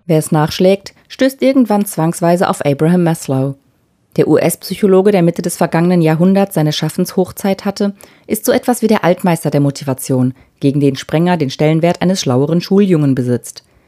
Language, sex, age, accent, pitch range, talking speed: German, female, 30-49, German, 145-195 Hz, 155 wpm